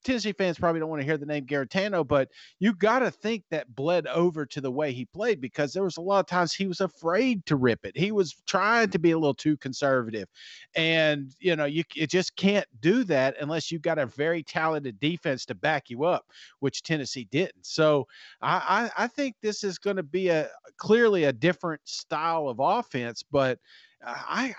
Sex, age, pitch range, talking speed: male, 40-59, 150-210 Hz, 210 wpm